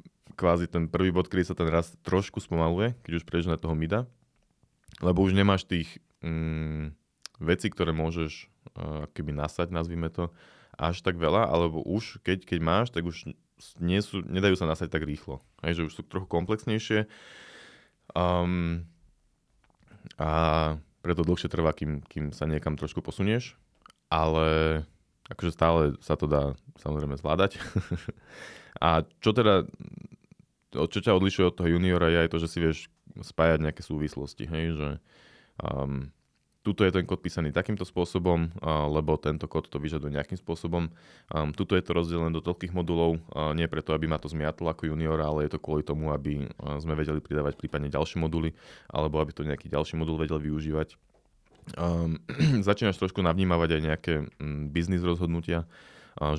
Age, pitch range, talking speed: 20-39, 75-90 Hz, 160 wpm